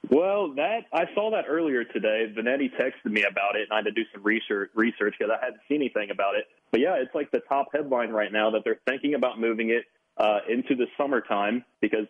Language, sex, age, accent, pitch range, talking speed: English, male, 30-49, American, 105-135 Hz, 230 wpm